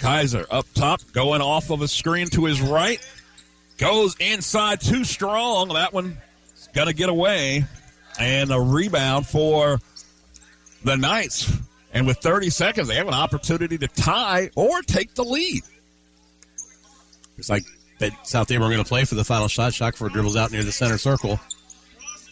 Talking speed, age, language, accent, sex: 160 wpm, 50-69, English, American, male